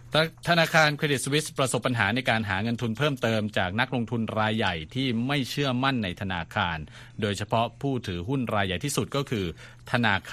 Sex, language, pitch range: male, Thai, 100-125 Hz